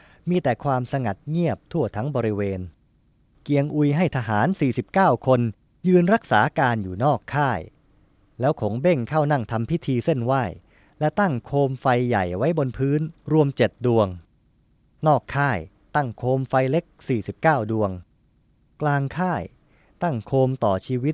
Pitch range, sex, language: 105-140 Hz, male, Thai